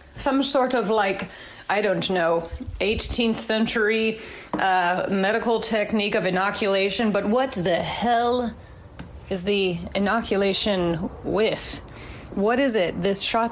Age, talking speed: 30-49, 120 wpm